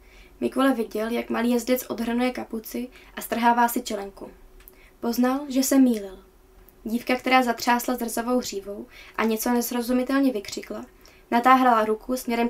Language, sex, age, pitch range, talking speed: Czech, female, 20-39, 220-255 Hz, 130 wpm